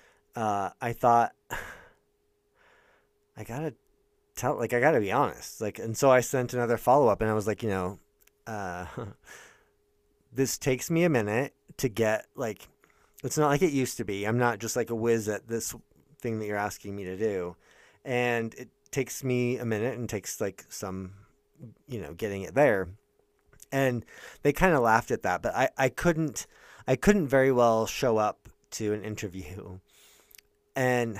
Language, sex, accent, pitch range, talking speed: English, male, American, 110-145 Hz, 175 wpm